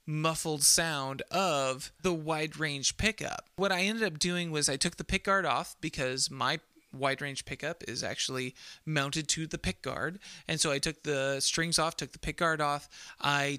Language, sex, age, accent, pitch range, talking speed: English, male, 30-49, American, 145-190 Hz, 180 wpm